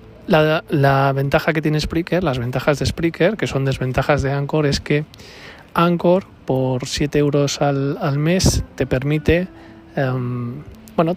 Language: Spanish